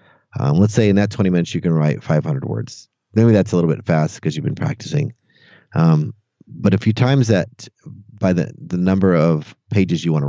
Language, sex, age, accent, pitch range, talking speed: English, male, 30-49, American, 85-125 Hz, 215 wpm